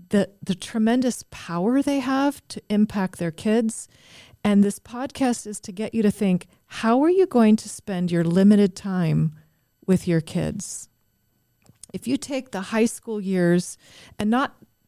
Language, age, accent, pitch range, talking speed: English, 40-59, American, 175-220 Hz, 160 wpm